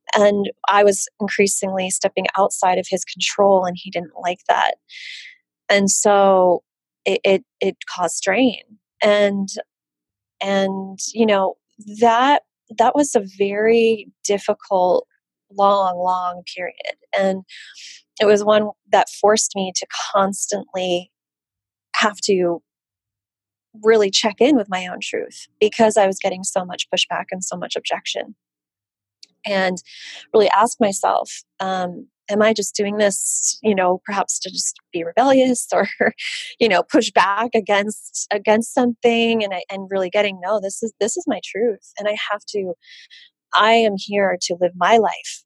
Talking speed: 145 wpm